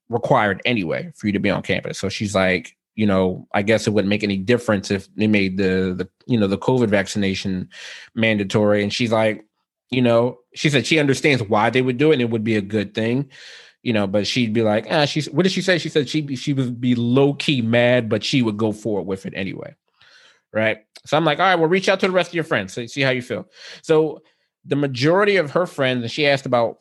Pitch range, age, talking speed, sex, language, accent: 110-140 Hz, 20-39, 250 wpm, male, English, American